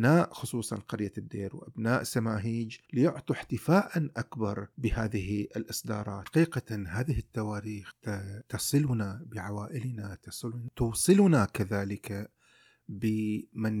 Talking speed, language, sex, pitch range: 85 wpm, Arabic, male, 105-130 Hz